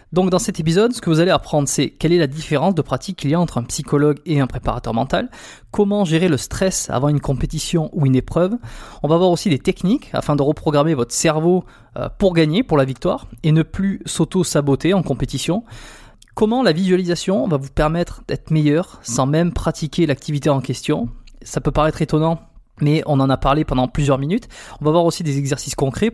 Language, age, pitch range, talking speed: French, 20-39, 135-170 Hz, 210 wpm